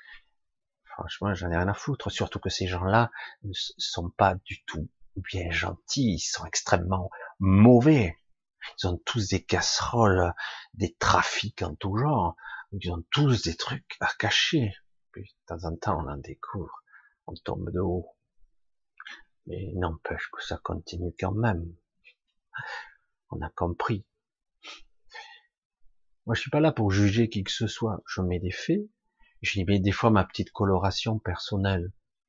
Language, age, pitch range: French, 50-69, 90-110 Hz